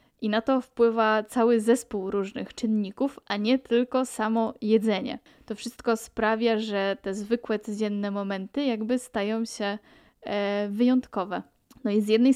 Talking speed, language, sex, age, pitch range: 140 wpm, Polish, female, 10-29, 200-235 Hz